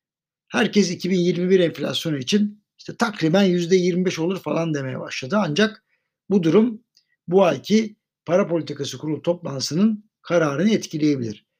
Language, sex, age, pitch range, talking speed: Turkish, male, 60-79, 160-210 Hz, 115 wpm